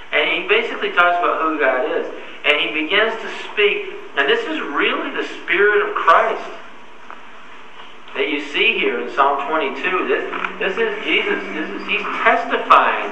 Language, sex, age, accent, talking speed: English, male, 50-69, American, 165 wpm